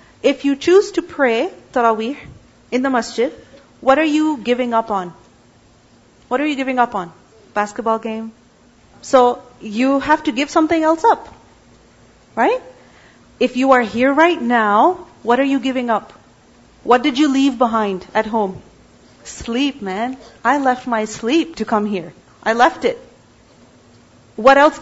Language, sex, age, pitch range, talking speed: English, female, 40-59, 225-305 Hz, 155 wpm